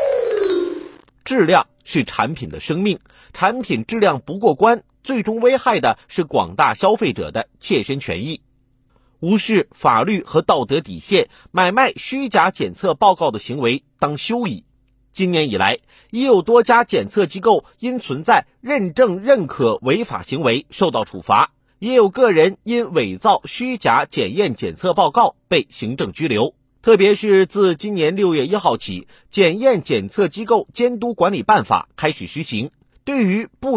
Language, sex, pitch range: Chinese, male, 175-245 Hz